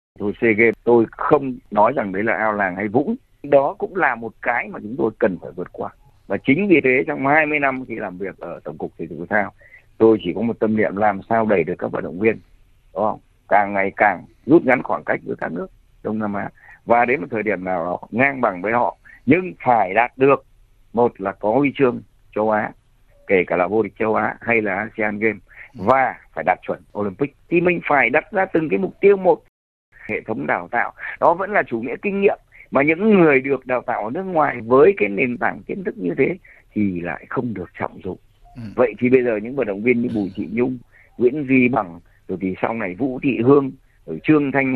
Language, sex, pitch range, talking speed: Vietnamese, male, 105-145 Hz, 235 wpm